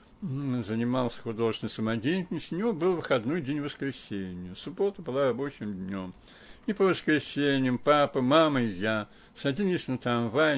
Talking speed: 135 wpm